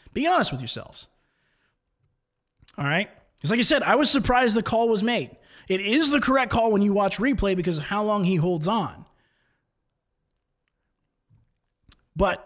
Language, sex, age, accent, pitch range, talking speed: English, male, 20-39, American, 150-200 Hz, 165 wpm